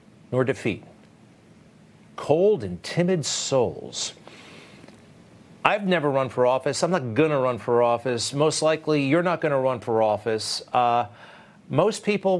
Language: English